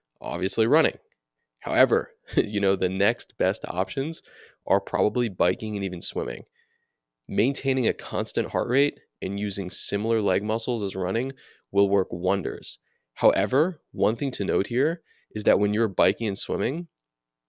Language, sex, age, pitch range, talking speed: English, male, 20-39, 95-115 Hz, 150 wpm